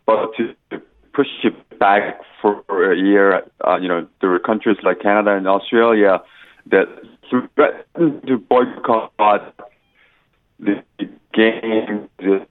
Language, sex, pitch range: Korean, male, 105-130 Hz